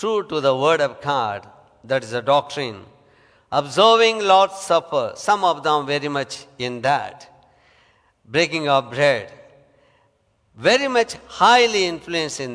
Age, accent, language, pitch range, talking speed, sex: 60-79, Indian, English, 180-270 Hz, 135 wpm, male